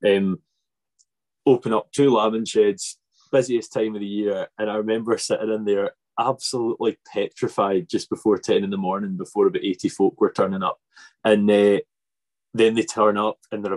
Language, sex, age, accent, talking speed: English, male, 20-39, British, 175 wpm